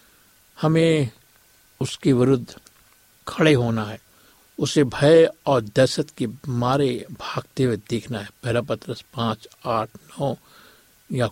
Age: 60-79